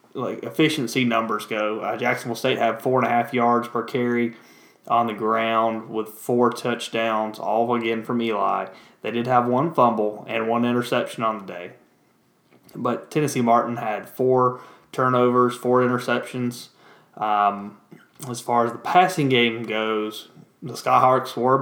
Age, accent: 20-39, American